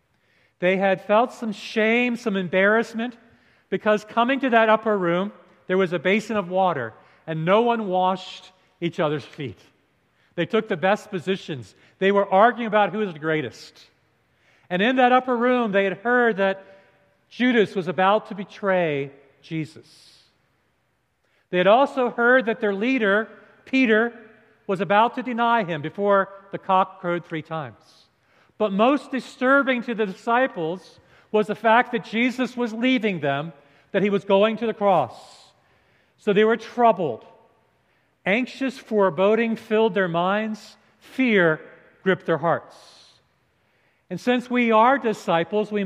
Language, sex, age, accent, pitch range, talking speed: English, male, 50-69, American, 175-230 Hz, 150 wpm